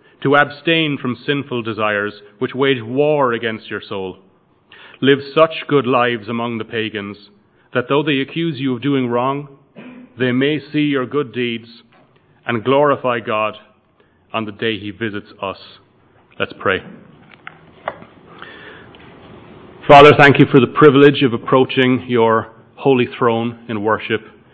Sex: male